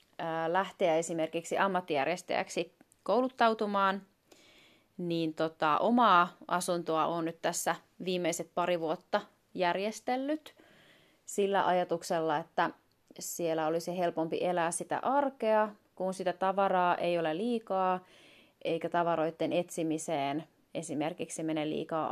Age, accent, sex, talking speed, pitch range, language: 30-49, native, female, 95 wpm, 165-190 Hz, Finnish